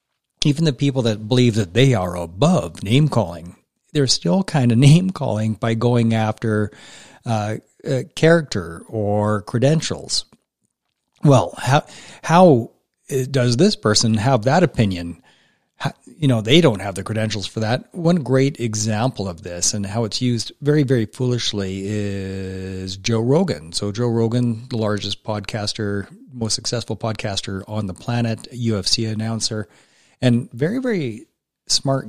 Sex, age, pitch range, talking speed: male, 40-59, 105-135 Hz, 140 wpm